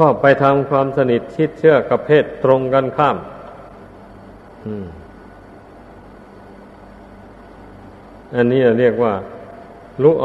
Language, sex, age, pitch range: Thai, male, 60-79, 100-145 Hz